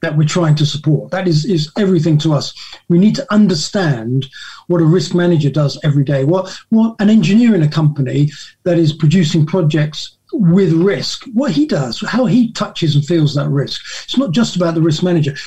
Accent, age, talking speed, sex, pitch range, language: British, 40-59, 200 wpm, male, 150-200 Hz, English